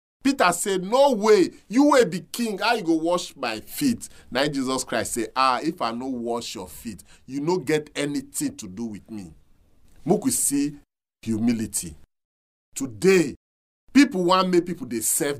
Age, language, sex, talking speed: 40-59, English, male, 170 wpm